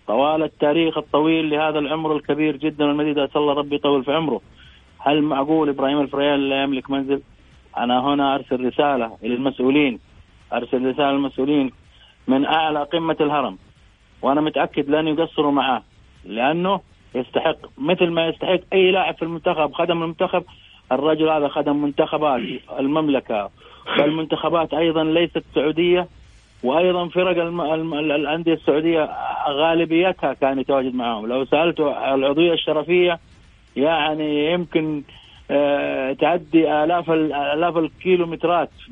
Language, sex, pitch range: Arabic, male, 135-165 Hz